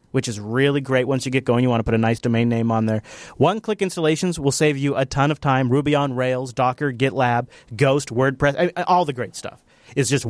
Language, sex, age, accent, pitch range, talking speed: English, male, 30-49, American, 125-170 Hz, 235 wpm